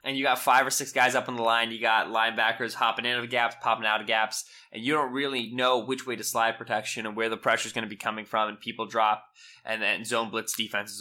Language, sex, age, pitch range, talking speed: English, male, 20-39, 110-120 Hz, 275 wpm